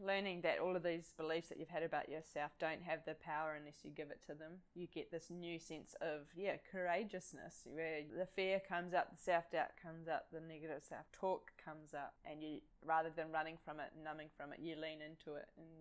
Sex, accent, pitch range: female, Australian, 155-185 Hz